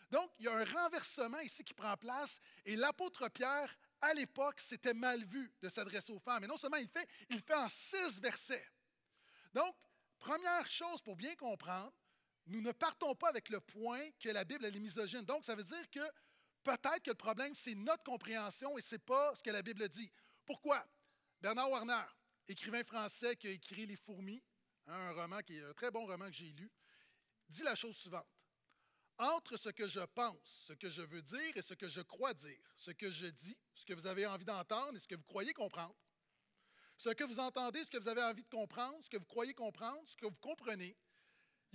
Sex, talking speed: male, 215 wpm